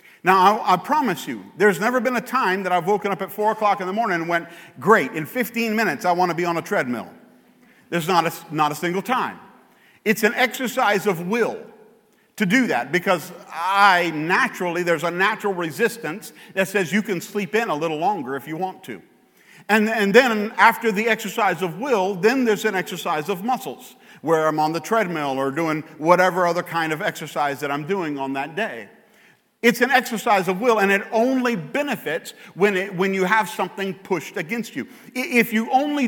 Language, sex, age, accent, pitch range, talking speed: English, male, 50-69, American, 175-225 Hz, 200 wpm